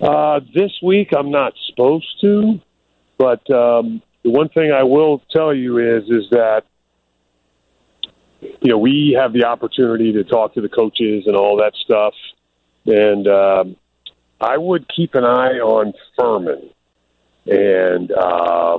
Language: English